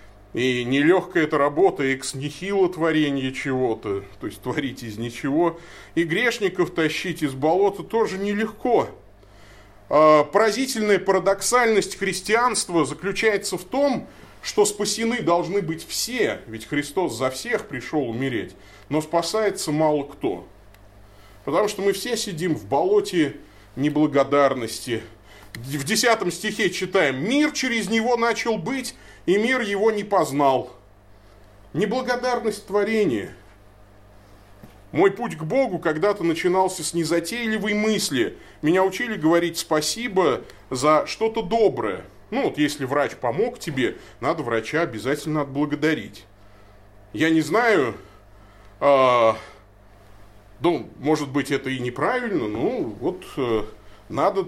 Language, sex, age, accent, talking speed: Russian, male, 30-49, native, 115 wpm